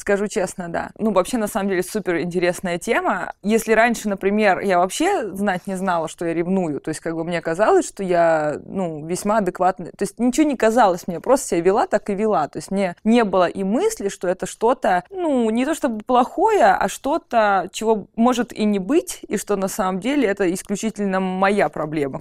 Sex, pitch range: female, 175-215 Hz